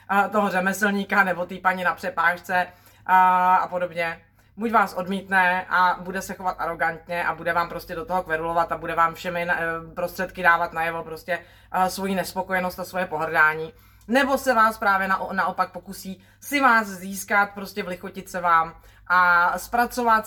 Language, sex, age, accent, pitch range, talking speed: Czech, female, 30-49, native, 165-195 Hz, 165 wpm